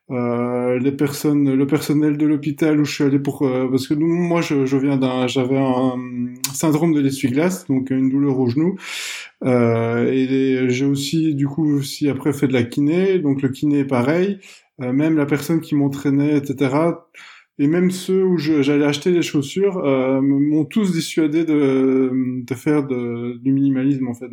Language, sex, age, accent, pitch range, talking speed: French, male, 20-39, French, 135-155 Hz, 195 wpm